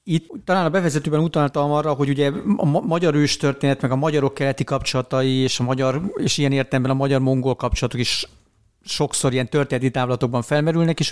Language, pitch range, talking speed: Hungarian, 130-150 Hz, 175 wpm